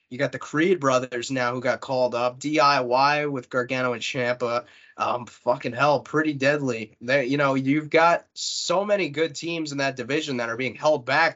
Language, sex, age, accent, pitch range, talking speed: English, male, 20-39, American, 125-170 Hz, 195 wpm